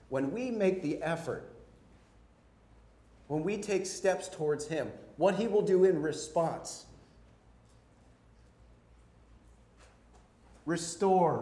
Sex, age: male, 40-59